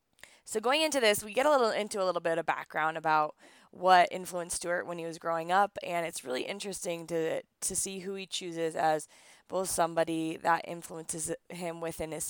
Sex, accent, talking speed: female, American, 200 wpm